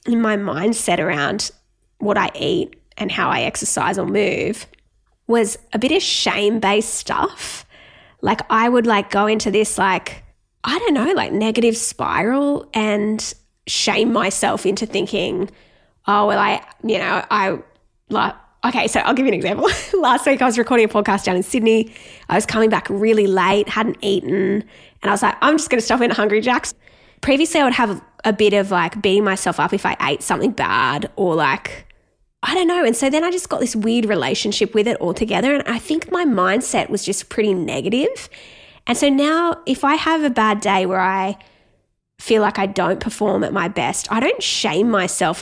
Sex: female